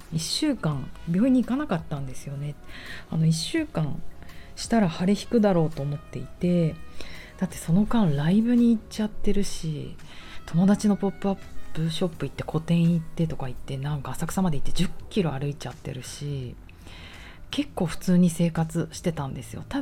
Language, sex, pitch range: Japanese, female, 140-195 Hz